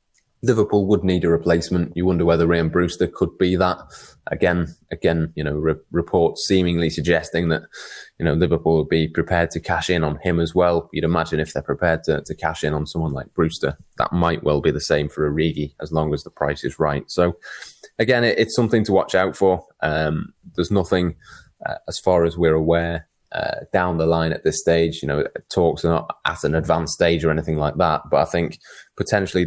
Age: 20-39